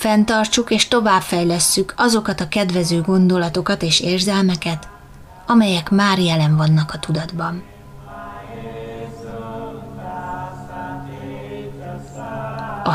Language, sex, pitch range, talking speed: Hungarian, female, 165-205 Hz, 75 wpm